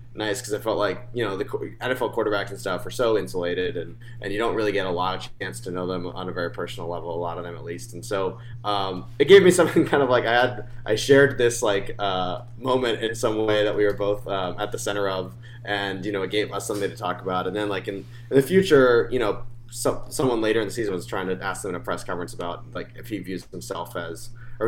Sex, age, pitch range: male, 20-39, 100-120 Hz